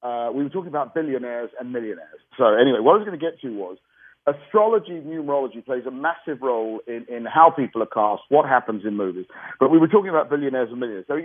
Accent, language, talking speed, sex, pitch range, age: British, English, 235 wpm, male, 115-145 Hz, 40-59